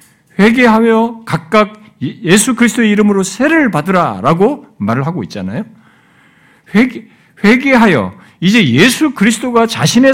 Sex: male